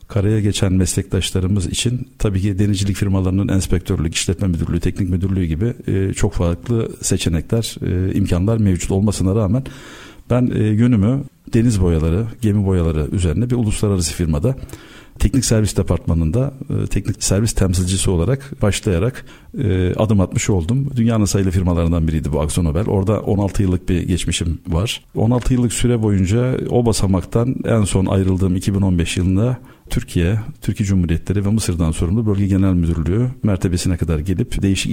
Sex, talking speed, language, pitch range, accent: male, 140 wpm, Turkish, 90-110 Hz, native